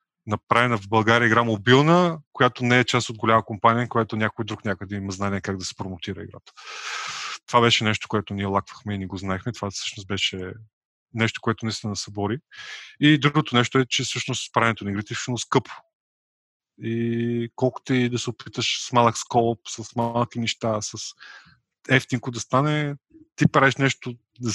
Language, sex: Bulgarian, male